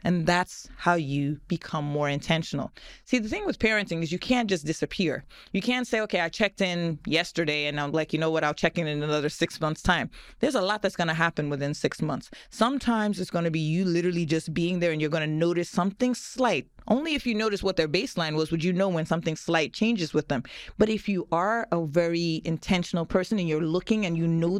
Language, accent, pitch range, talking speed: English, American, 155-205 Hz, 235 wpm